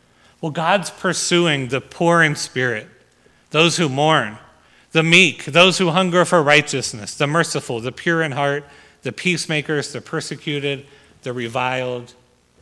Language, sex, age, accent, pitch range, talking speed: English, male, 40-59, American, 120-155 Hz, 140 wpm